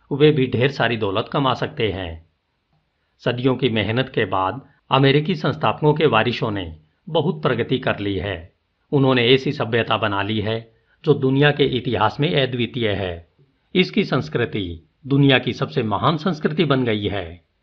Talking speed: 155 wpm